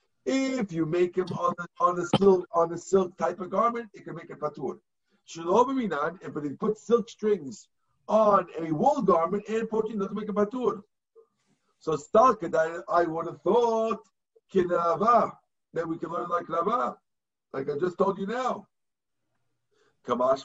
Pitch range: 160-220 Hz